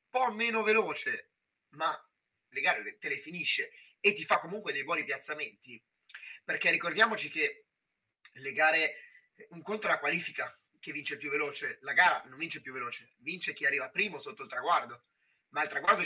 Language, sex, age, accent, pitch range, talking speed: Italian, male, 30-49, native, 150-210 Hz, 170 wpm